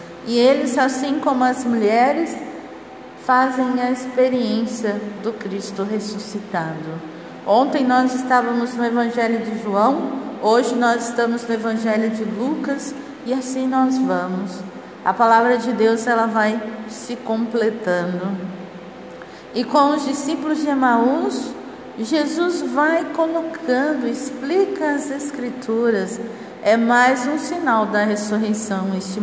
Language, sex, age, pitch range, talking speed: Portuguese, female, 50-69, 210-265 Hz, 115 wpm